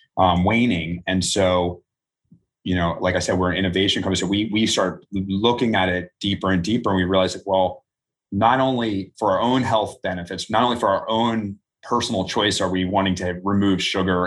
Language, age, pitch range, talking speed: English, 30-49, 90-100 Hz, 200 wpm